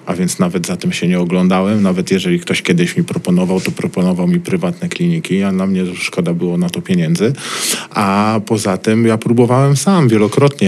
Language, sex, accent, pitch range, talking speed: Polish, male, native, 100-140 Hz, 190 wpm